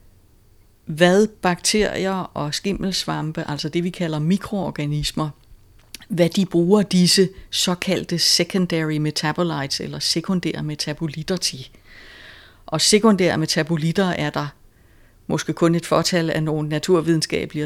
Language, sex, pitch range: Danish, female, 150-190 Hz